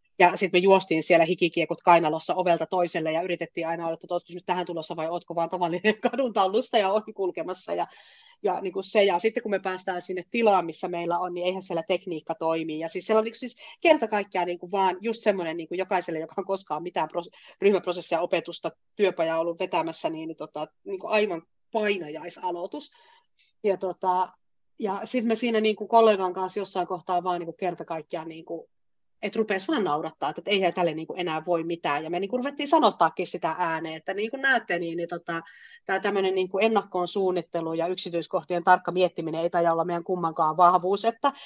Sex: female